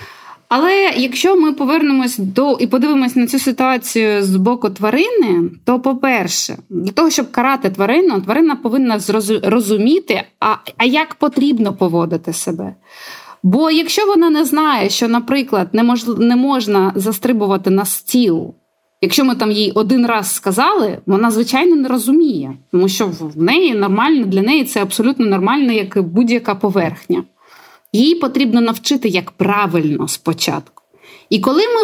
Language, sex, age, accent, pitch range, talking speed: Ukrainian, female, 20-39, native, 195-275 Hz, 140 wpm